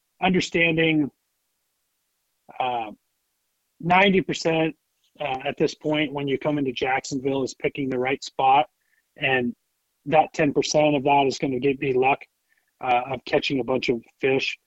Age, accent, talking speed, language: 30-49, American, 150 wpm, English